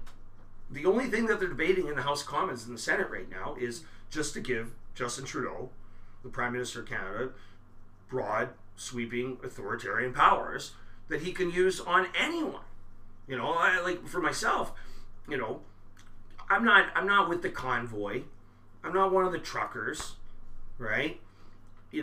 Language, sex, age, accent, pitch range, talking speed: English, male, 40-59, American, 100-135 Hz, 160 wpm